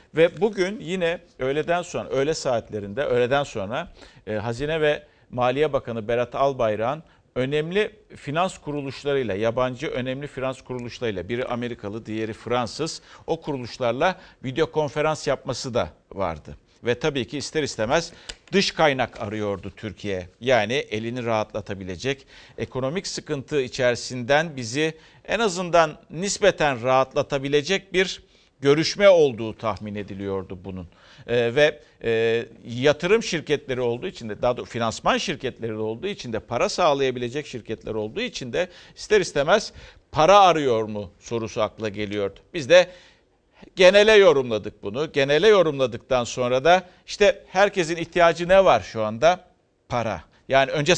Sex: male